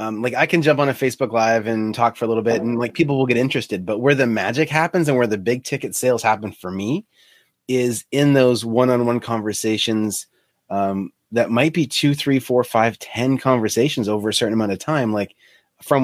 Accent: American